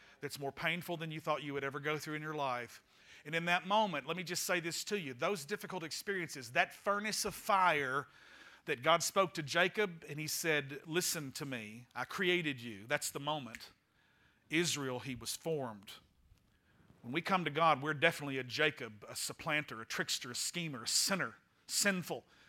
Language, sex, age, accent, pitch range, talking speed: English, male, 40-59, American, 150-200 Hz, 190 wpm